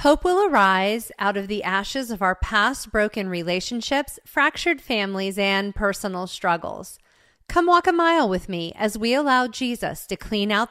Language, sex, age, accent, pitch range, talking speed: English, female, 40-59, American, 175-235 Hz, 170 wpm